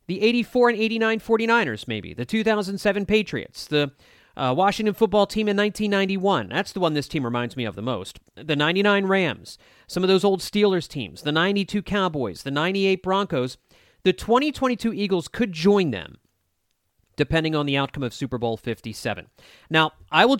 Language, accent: English, American